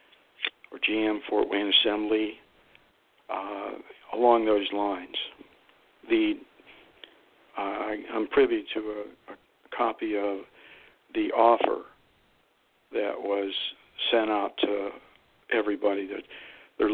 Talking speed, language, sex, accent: 105 wpm, English, male, American